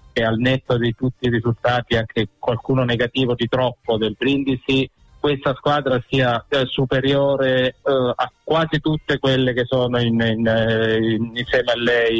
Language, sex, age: Italian, male, 40-59